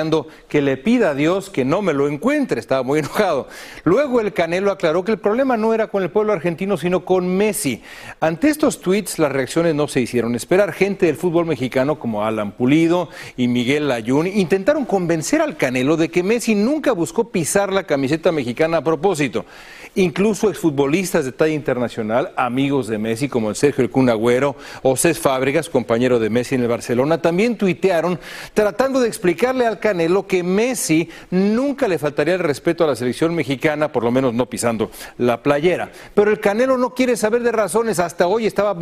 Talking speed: 190 wpm